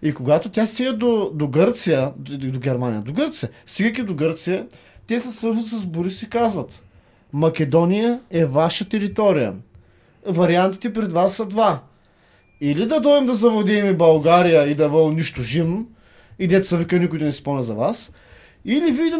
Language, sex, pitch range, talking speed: Bulgarian, male, 165-245 Hz, 165 wpm